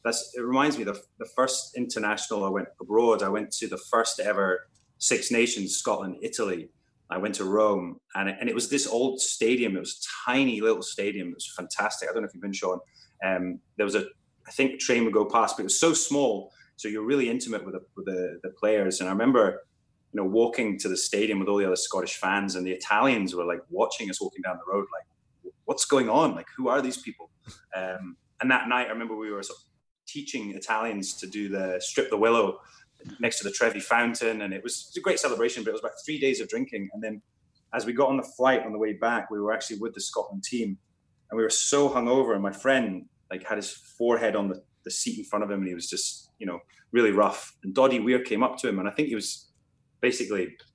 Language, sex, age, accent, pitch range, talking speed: English, male, 20-39, British, 100-130 Hz, 245 wpm